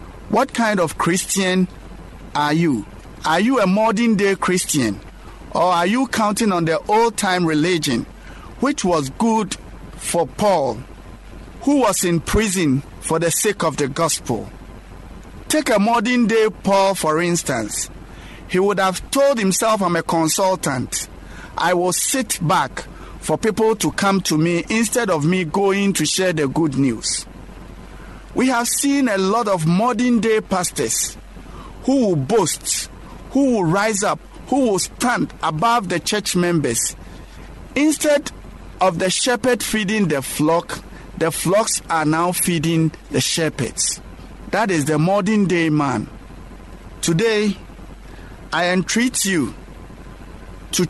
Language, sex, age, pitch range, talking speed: English, male, 50-69, 155-220 Hz, 135 wpm